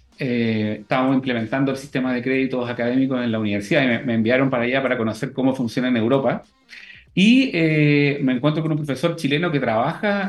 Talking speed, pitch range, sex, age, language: 190 wpm, 125-160 Hz, male, 40-59, Spanish